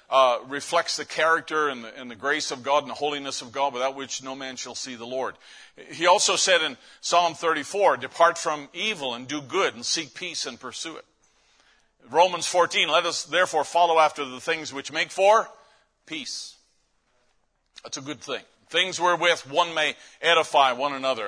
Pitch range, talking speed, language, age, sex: 135-170 Hz, 185 wpm, English, 50-69, male